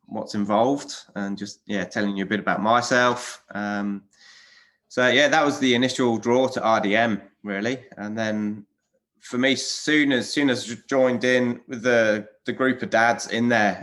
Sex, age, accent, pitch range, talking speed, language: male, 20-39, British, 105-125 Hz, 175 wpm, English